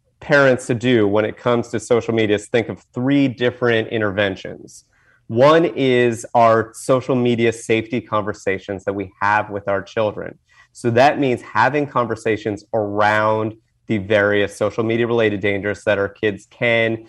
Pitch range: 105-120 Hz